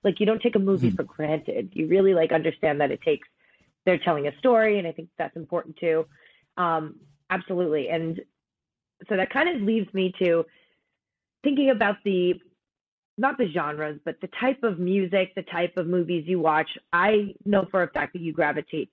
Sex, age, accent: female, 30-49, American